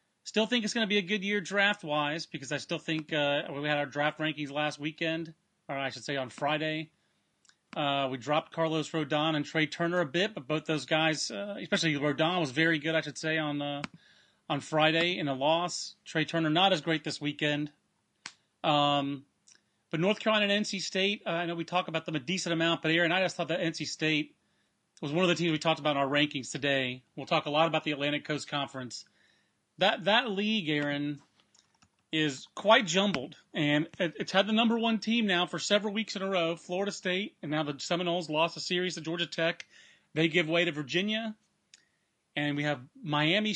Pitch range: 150-200 Hz